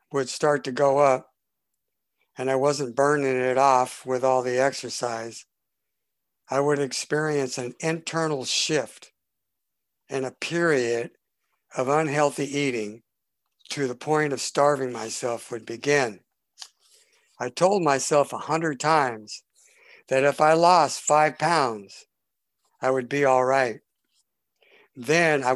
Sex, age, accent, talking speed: male, 60-79, American, 125 wpm